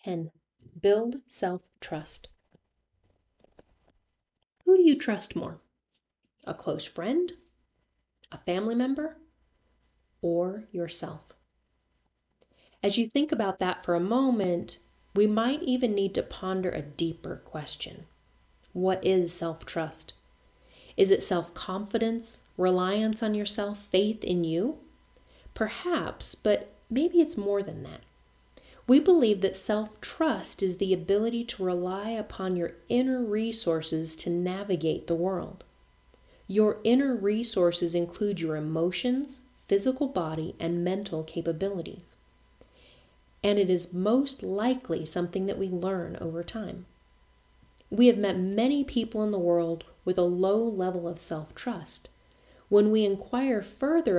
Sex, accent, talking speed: female, American, 120 wpm